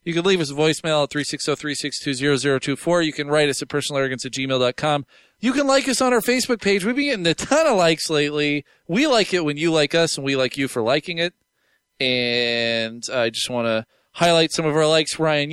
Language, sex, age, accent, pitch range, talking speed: English, male, 20-39, American, 135-180 Hz, 220 wpm